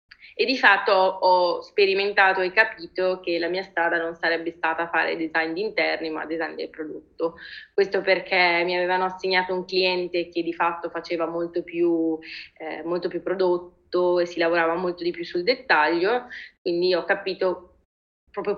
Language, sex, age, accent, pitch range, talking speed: Italian, female, 20-39, native, 175-215 Hz, 165 wpm